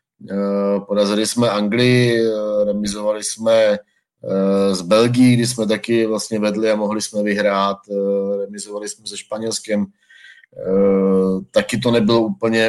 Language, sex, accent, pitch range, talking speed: Czech, male, native, 100-105 Hz, 115 wpm